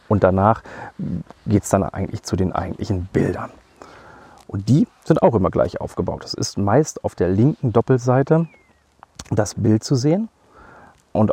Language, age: German, 40-59